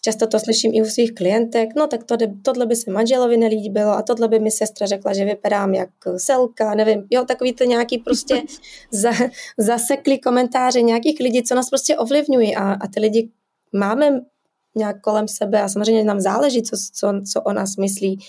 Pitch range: 215-245 Hz